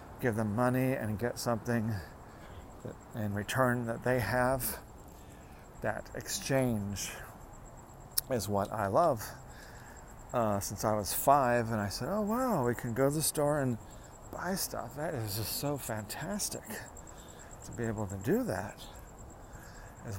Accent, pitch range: American, 105-130 Hz